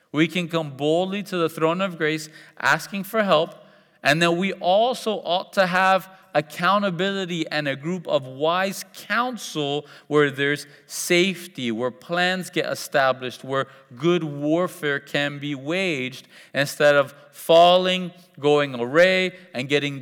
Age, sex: 40-59, male